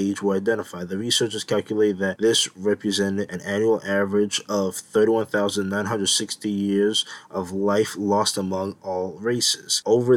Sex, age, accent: male, 20-39, American